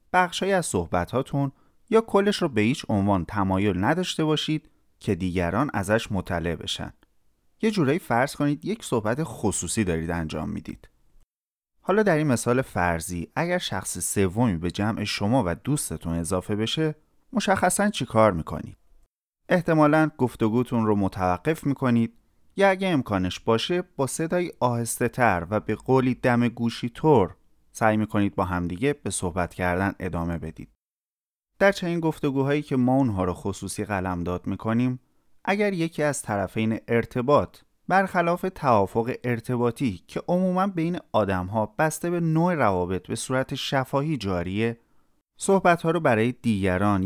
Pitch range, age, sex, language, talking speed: 95-150 Hz, 30-49, male, Persian, 140 wpm